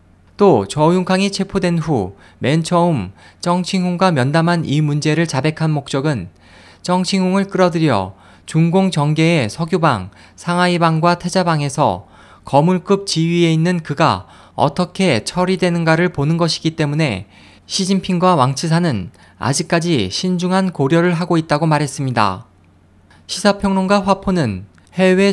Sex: male